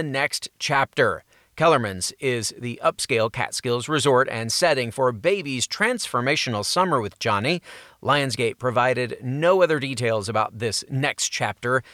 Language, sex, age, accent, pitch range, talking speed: English, male, 30-49, American, 130-180 Hz, 125 wpm